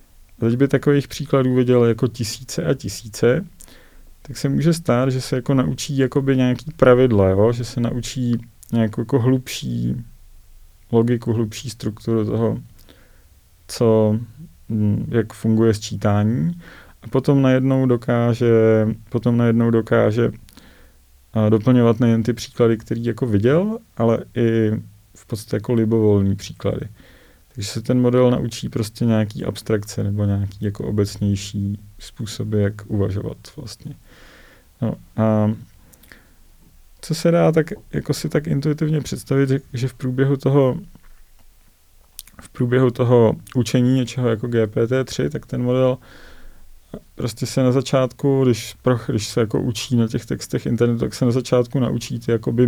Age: 30-49